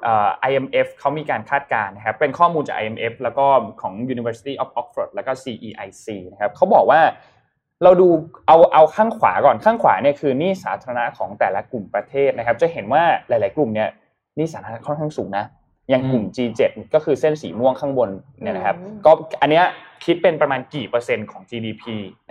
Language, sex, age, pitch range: Thai, male, 20-39, 115-165 Hz